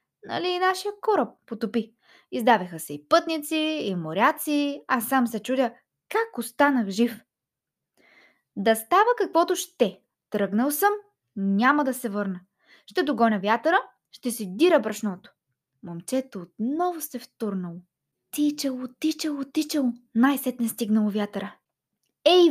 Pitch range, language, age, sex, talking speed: 210-310 Hz, Bulgarian, 20-39, female, 125 wpm